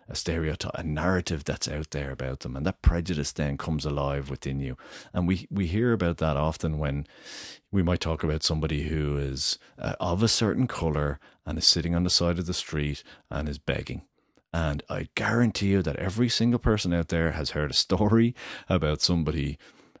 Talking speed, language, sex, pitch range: 195 wpm, English, male, 75-90 Hz